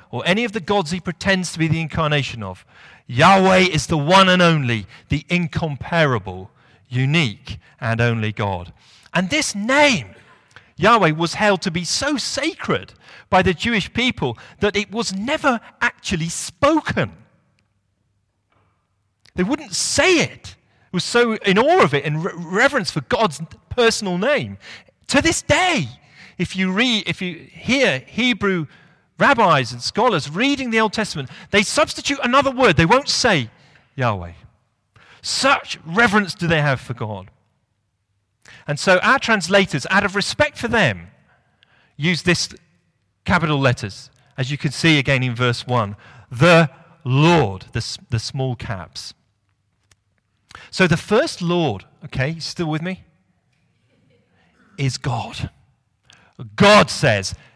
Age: 40-59